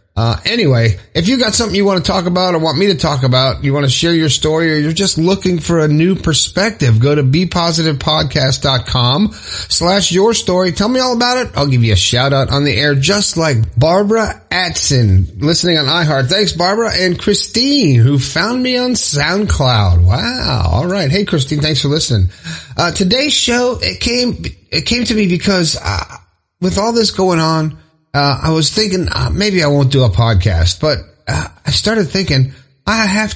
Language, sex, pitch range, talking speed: English, male, 130-195 Hz, 195 wpm